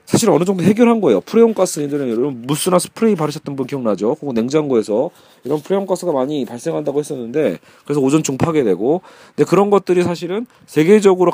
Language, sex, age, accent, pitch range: Korean, male, 40-59, native, 145-185 Hz